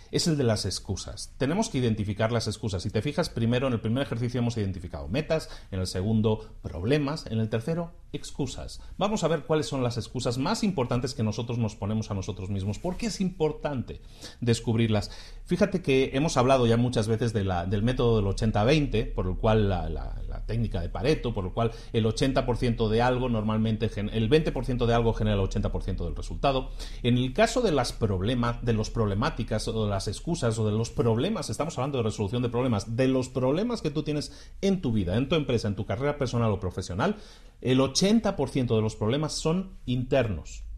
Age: 40-59